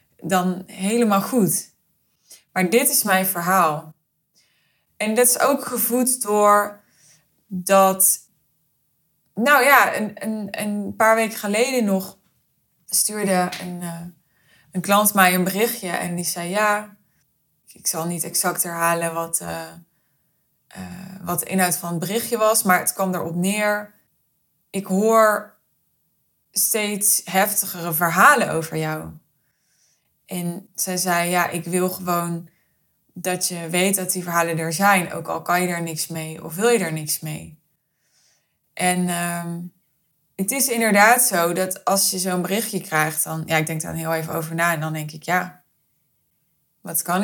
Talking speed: 150 wpm